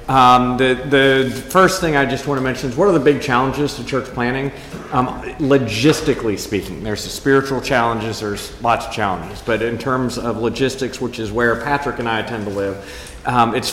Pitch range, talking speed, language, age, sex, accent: 115-140 Hz, 195 wpm, English, 40-59, male, American